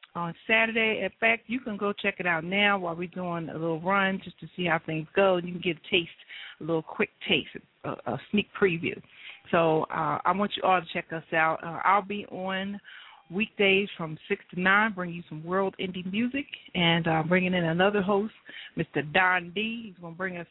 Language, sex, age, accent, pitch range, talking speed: English, female, 40-59, American, 170-215 Hz, 215 wpm